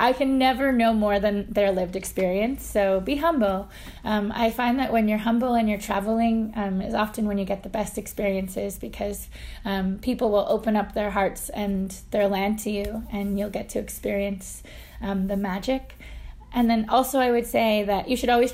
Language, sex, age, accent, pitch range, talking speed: English, female, 20-39, American, 200-225 Hz, 200 wpm